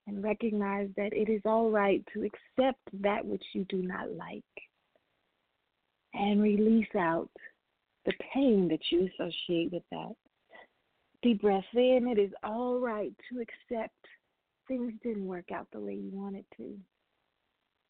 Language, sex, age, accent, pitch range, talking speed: English, female, 30-49, American, 195-230 Hz, 145 wpm